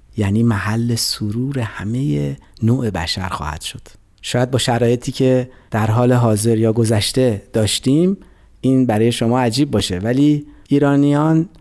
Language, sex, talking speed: Persian, male, 130 wpm